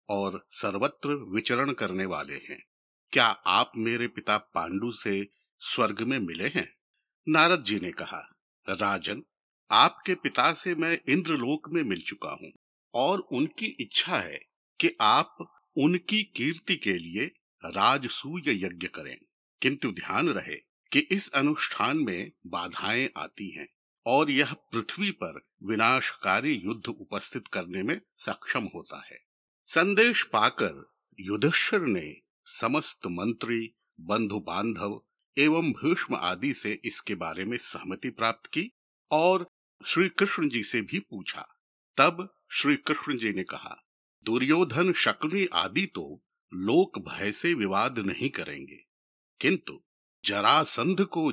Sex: male